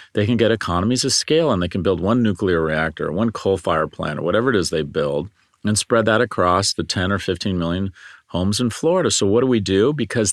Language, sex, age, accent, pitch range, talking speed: English, male, 40-59, American, 105-155 Hz, 240 wpm